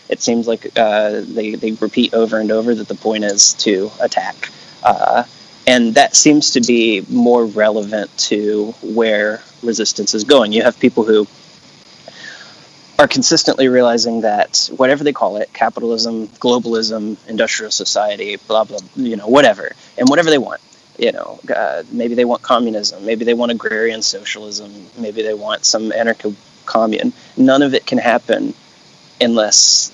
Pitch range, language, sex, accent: 110-120 Hz, English, male, American